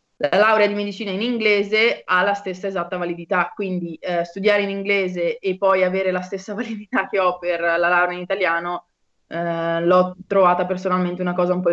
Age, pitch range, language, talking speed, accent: 20-39, 175-205 Hz, Italian, 190 wpm, native